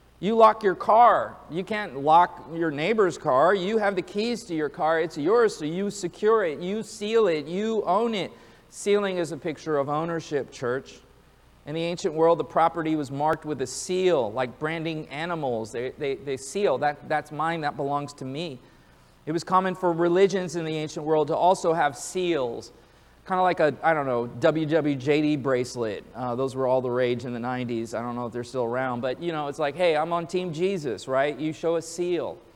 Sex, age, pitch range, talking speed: male, 40-59, 150-180 Hz, 210 wpm